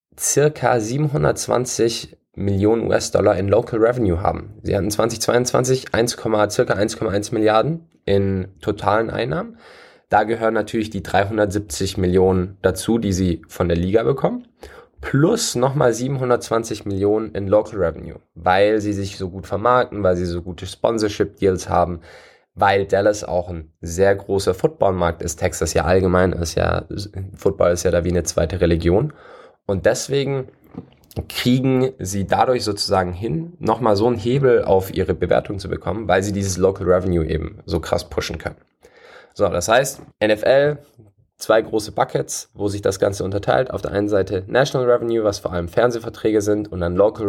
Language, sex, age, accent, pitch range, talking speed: German, male, 20-39, German, 90-110 Hz, 155 wpm